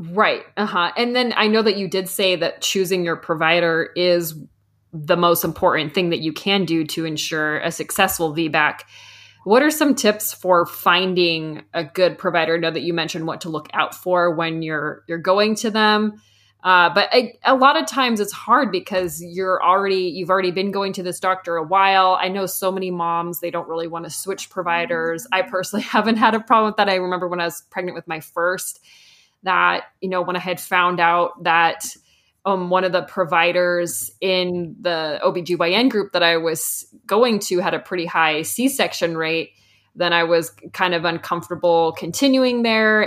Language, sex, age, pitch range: English, female, 20-39, 170-195 Hz